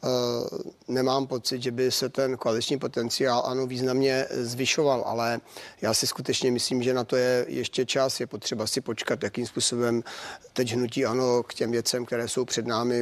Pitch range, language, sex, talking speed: 115-125 Hz, Czech, male, 175 wpm